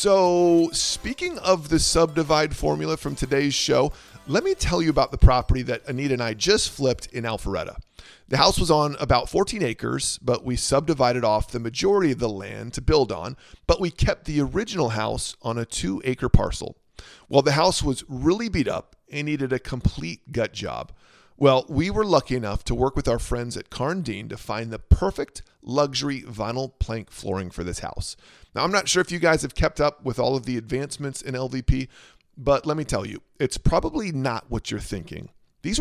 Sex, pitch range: male, 115-160 Hz